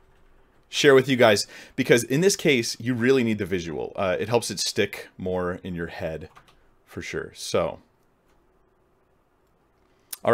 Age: 30-49